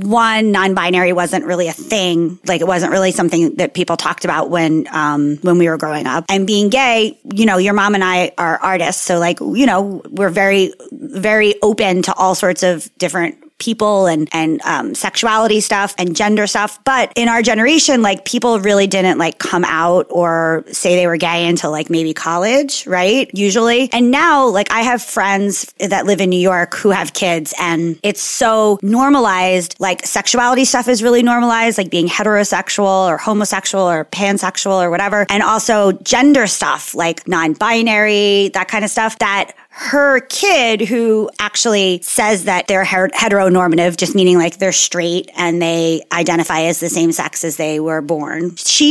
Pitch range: 175-225 Hz